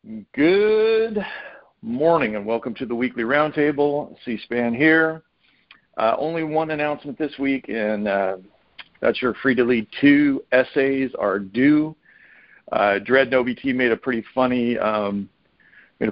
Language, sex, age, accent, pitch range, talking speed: English, male, 50-69, American, 110-135 Hz, 130 wpm